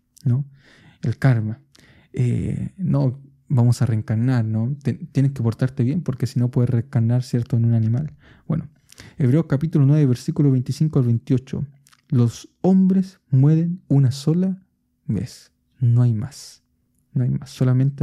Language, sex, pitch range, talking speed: Spanish, male, 125-150 Hz, 145 wpm